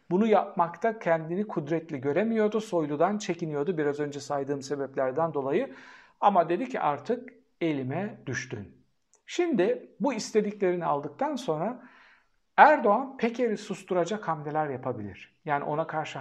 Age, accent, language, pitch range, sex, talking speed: 60-79, native, Turkish, 145-220 Hz, male, 115 wpm